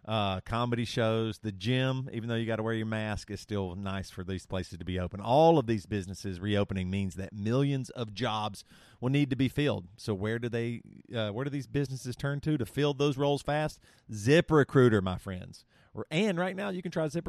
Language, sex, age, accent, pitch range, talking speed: English, male, 40-59, American, 105-140 Hz, 220 wpm